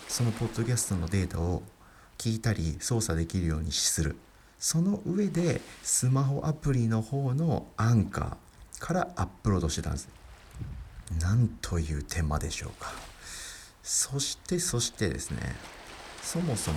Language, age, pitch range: Japanese, 50-69, 80-135 Hz